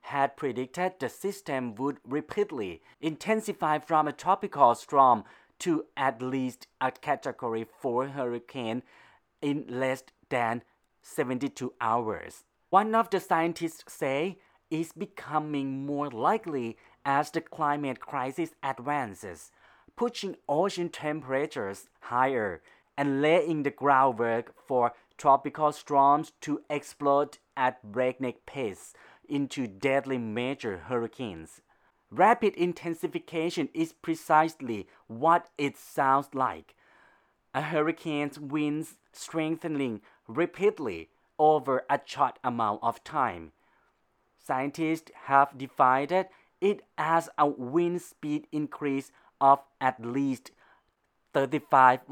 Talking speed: 100 wpm